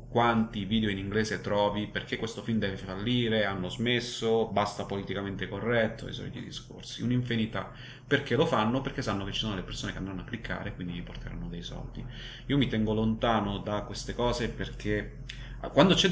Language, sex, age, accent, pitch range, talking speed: Italian, male, 30-49, native, 100-120 Hz, 185 wpm